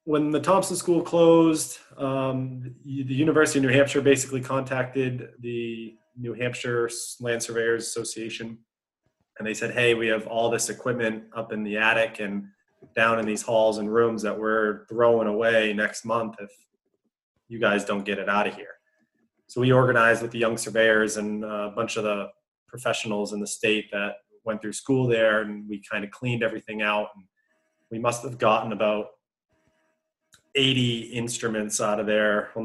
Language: English